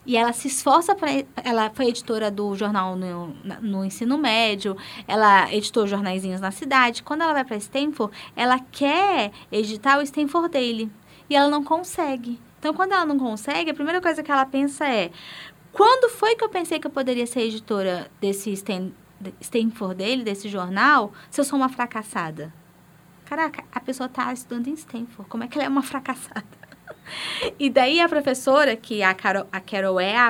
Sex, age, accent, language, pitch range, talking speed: female, 20-39, Brazilian, Portuguese, 200-285 Hz, 180 wpm